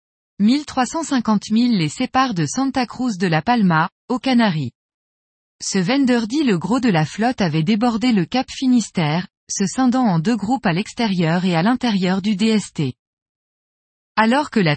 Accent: French